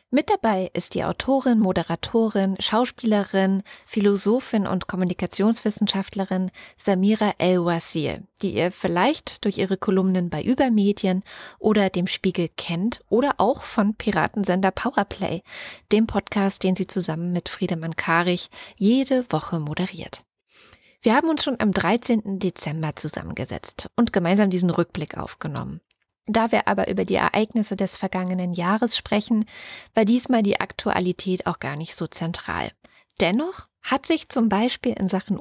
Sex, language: female, German